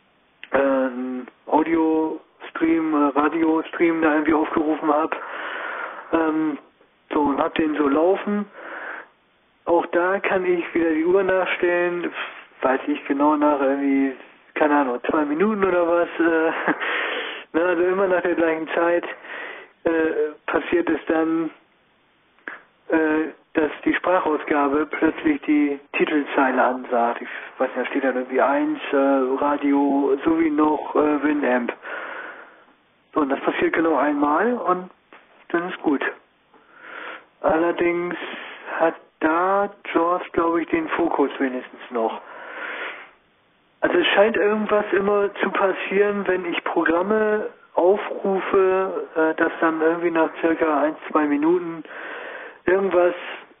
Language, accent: German, German